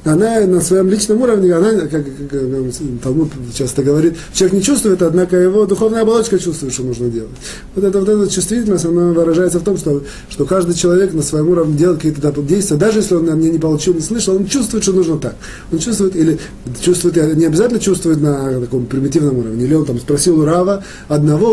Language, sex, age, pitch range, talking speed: Russian, male, 30-49, 130-185 Hz, 200 wpm